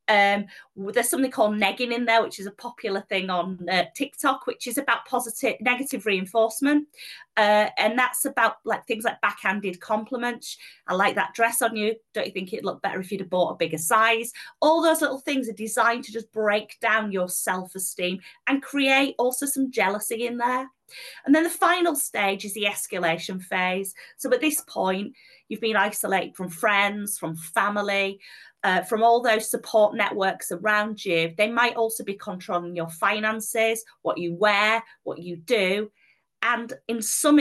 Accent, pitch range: British, 190-240 Hz